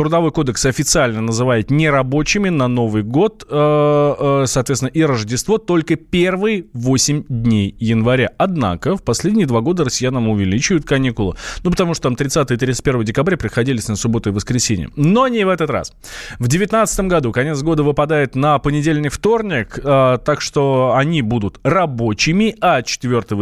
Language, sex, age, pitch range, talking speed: Russian, male, 20-39, 120-160 Hz, 145 wpm